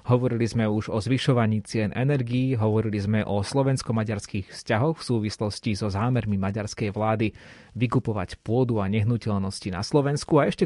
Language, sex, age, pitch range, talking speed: Slovak, male, 30-49, 105-125 Hz, 145 wpm